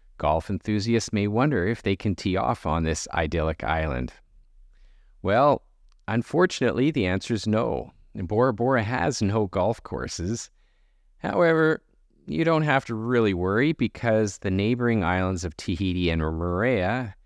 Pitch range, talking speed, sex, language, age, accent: 80-110 Hz, 140 wpm, male, English, 40-59, American